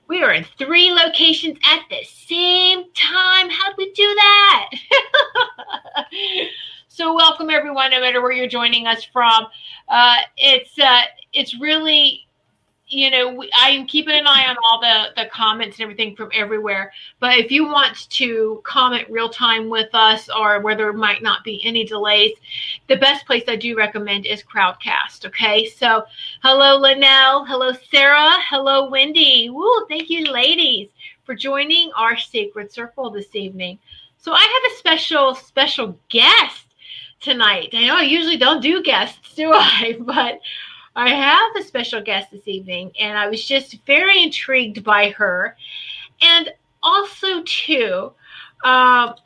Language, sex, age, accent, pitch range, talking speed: English, female, 30-49, American, 225-320 Hz, 150 wpm